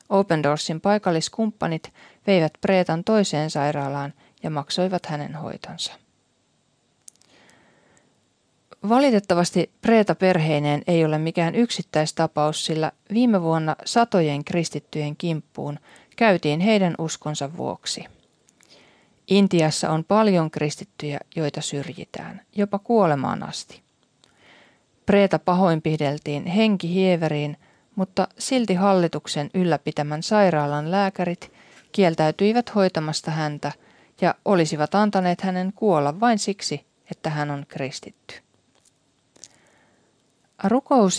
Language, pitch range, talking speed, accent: Finnish, 150-195 Hz, 85 wpm, native